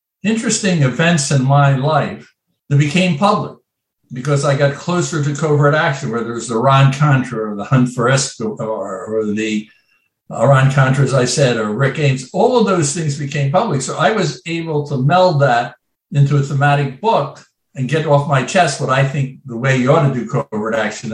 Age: 60-79